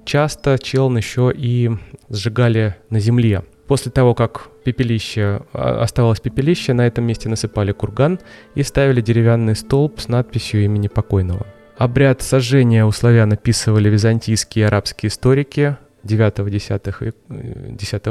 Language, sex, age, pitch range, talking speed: Russian, male, 20-39, 105-130 Hz, 125 wpm